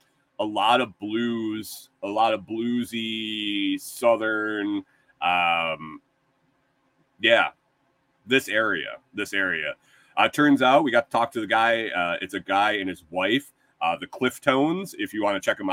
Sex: male